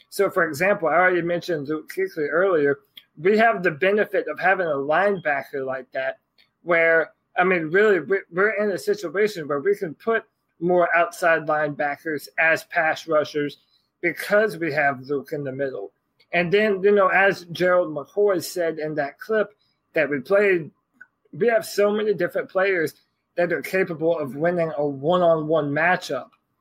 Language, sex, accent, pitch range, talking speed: English, male, American, 155-185 Hz, 160 wpm